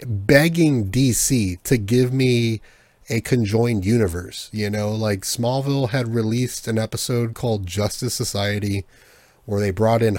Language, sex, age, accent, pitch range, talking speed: English, male, 30-49, American, 95-120 Hz, 135 wpm